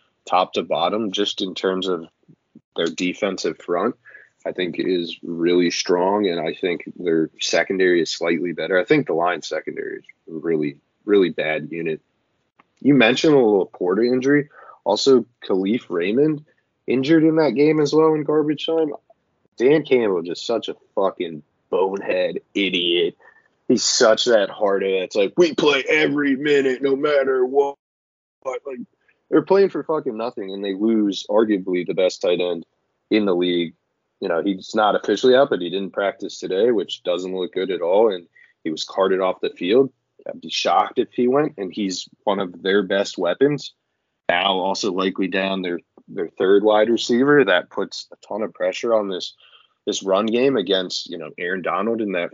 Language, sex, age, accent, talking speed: English, male, 20-39, American, 180 wpm